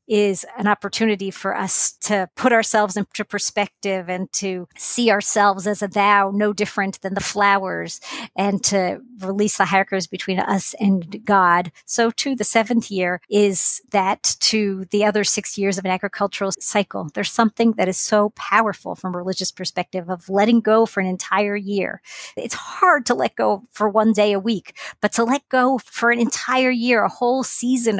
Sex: female